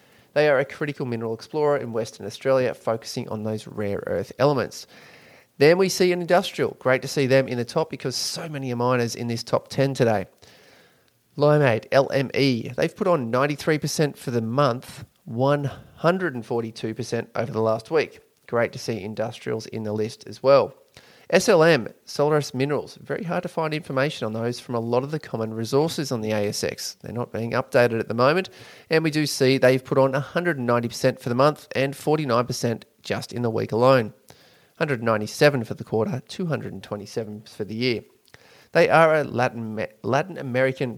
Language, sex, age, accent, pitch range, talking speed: English, male, 30-49, Australian, 115-140 Hz, 175 wpm